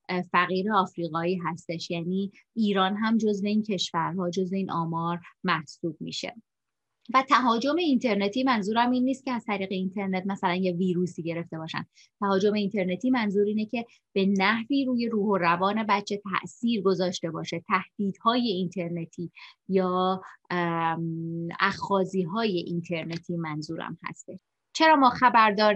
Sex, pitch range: female, 180-220 Hz